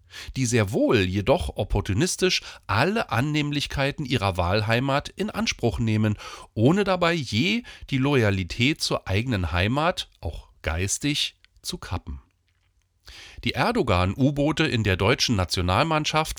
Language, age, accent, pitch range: German, 40-59, German, 95-145 Hz